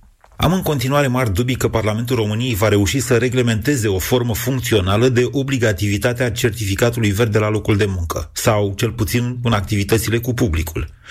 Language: Romanian